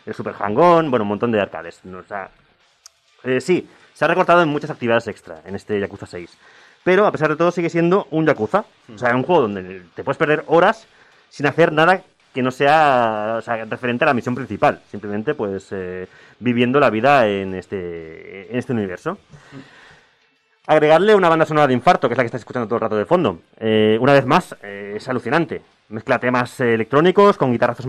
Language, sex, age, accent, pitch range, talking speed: Spanish, male, 30-49, Spanish, 105-135 Hz, 200 wpm